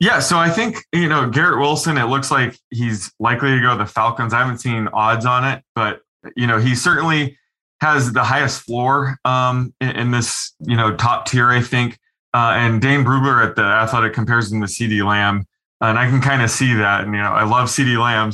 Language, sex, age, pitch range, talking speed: English, male, 20-39, 115-135 Hz, 225 wpm